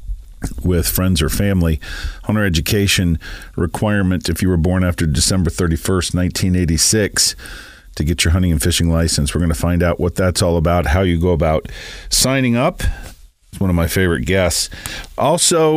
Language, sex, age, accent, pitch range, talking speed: English, male, 40-59, American, 85-100 Hz, 170 wpm